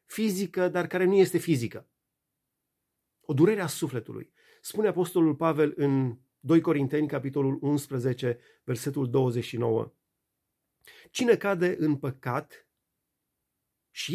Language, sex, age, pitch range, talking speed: Romanian, male, 40-59, 140-180 Hz, 105 wpm